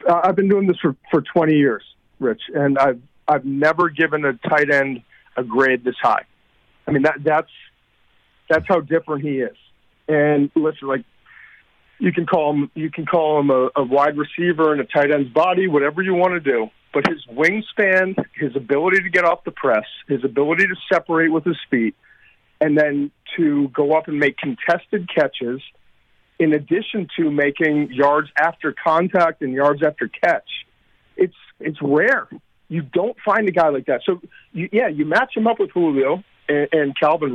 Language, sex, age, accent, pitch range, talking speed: English, male, 50-69, American, 145-175 Hz, 185 wpm